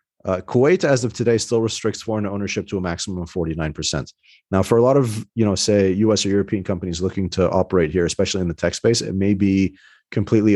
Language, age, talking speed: English, 30-49, 220 wpm